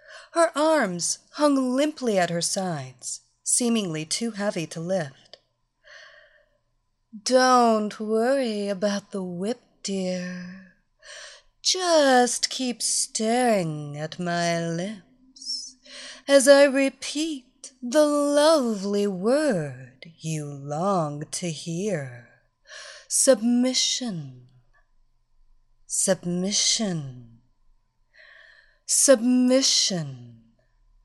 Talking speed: 70 wpm